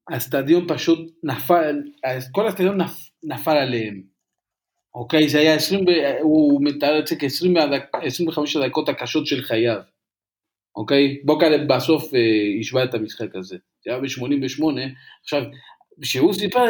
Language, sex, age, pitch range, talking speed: Hebrew, male, 40-59, 125-170 Hz, 120 wpm